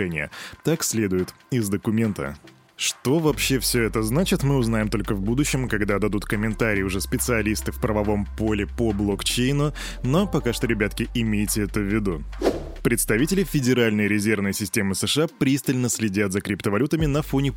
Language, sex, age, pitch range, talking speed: Russian, male, 20-39, 105-140 Hz, 145 wpm